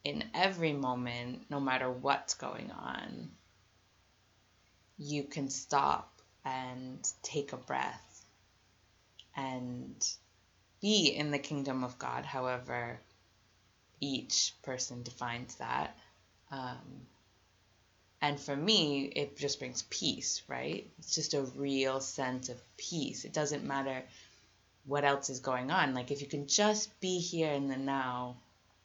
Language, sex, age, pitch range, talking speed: English, female, 20-39, 105-145 Hz, 125 wpm